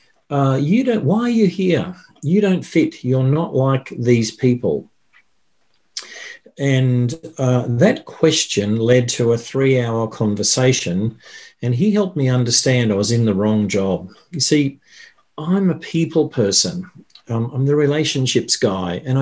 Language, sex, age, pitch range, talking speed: English, male, 50-69, 110-140 Hz, 145 wpm